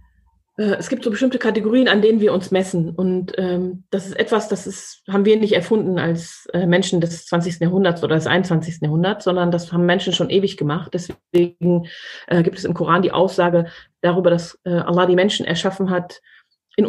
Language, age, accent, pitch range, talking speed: German, 30-49, German, 170-195 Hz, 190 wpm